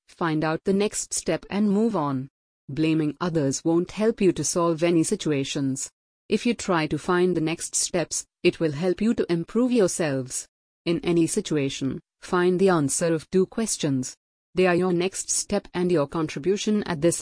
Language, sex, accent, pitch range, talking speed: English, female, Indian, 155-195 Hz, 180 wpm